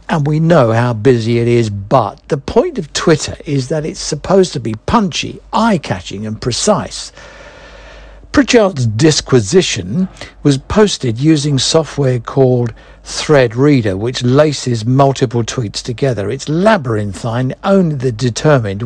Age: 60-79